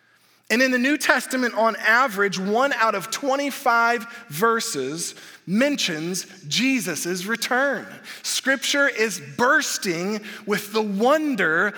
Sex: male